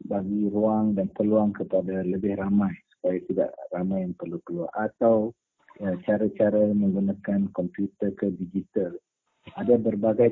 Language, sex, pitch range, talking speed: English, male, 100-135 Hz, 120 wpm